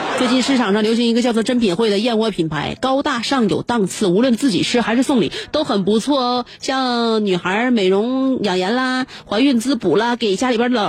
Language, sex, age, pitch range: Chinese, female, 30-49, 195-265 Hz